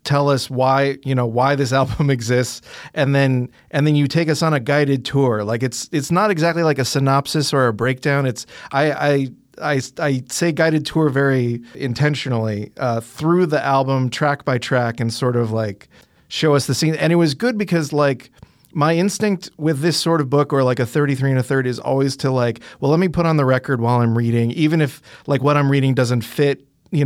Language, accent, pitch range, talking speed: English, American, 125-150 Hz, 220 wpm